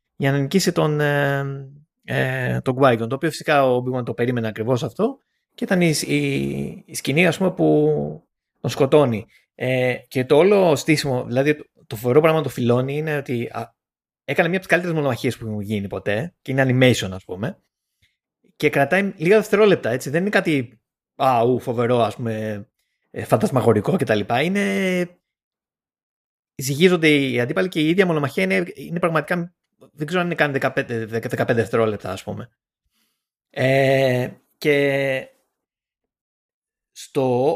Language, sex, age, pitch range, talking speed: Greek, male, 20-39, 115-160 Hz, 145 wpm